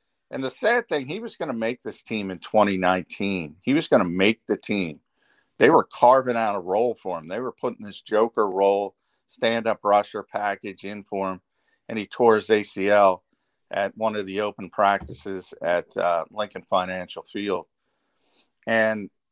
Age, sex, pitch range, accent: 50-69, male, 95-115 Hz, American